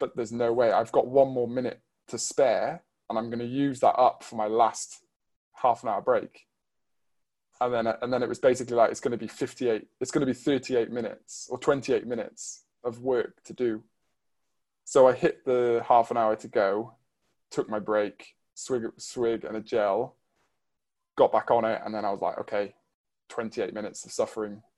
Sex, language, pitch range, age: male, English, 110-135 Hz, 20-39